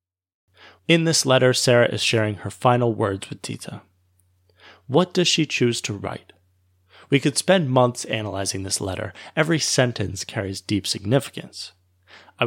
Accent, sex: American, male